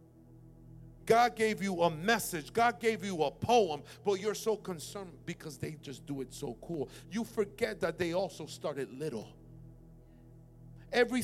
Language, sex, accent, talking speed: English, male, American, 155 wpm